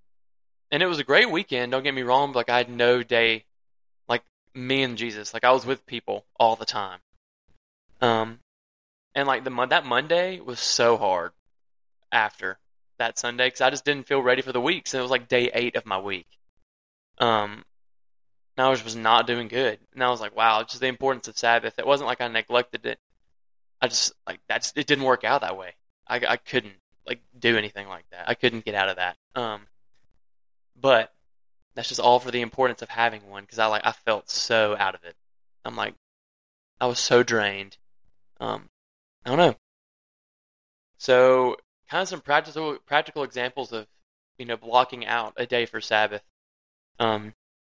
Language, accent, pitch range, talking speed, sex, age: English, American, 100-130 Hz, 195 wpm, male, 20-39